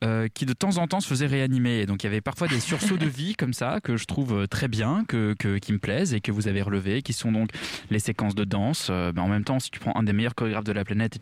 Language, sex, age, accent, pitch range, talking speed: French, male, 20-39, French, 105-145 Hz, 310 wpm